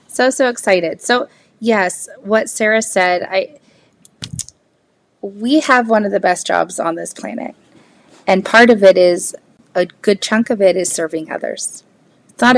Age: 30-49